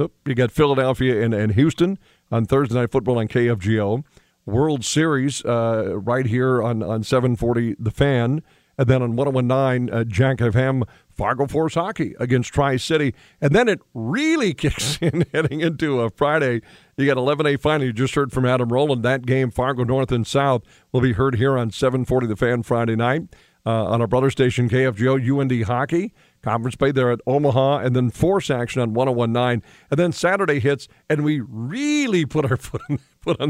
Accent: American